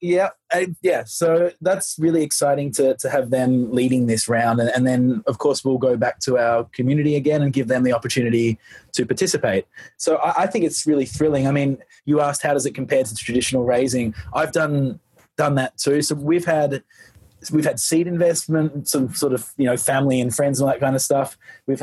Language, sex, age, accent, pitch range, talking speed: English, male, 20-39, Australian, 115-145 Hz, 215 wpm